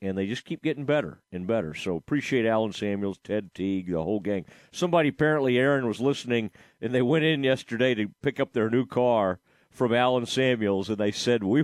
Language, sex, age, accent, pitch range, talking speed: English, male, 40-59, American, 110-150 Hz, 205 wpm